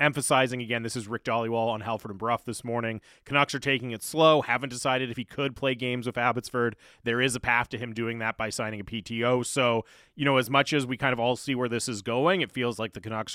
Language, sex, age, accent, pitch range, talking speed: English, male, 30-49, American, 115-140 Hz, 260 wpm